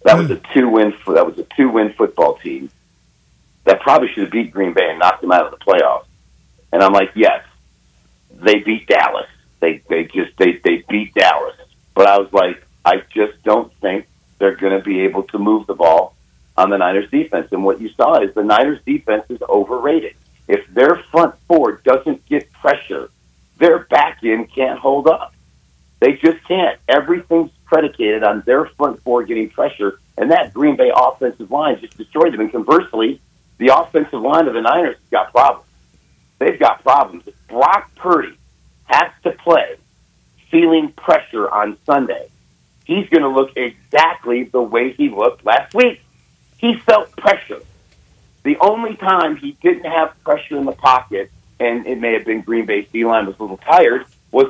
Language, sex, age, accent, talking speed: English, male, 50-69, American, 180 wpm